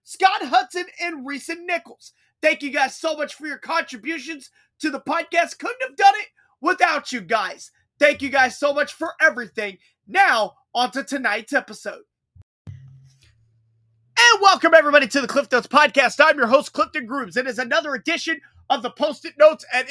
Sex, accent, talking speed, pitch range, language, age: male, American, 170 wpm, 270-350 Hz, English, 30-49